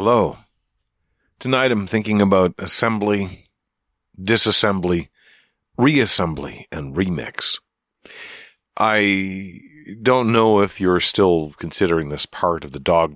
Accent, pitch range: American, 80-110 Hz